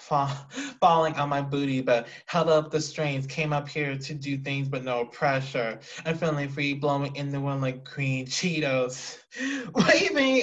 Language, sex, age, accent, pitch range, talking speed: English, male, 20-39, American, 130-155 Hz, 180 wpm